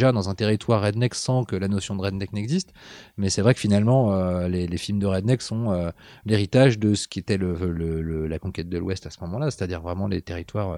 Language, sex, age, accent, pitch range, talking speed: French, male, 30-49, French, 90-115 Hz, 225 wpm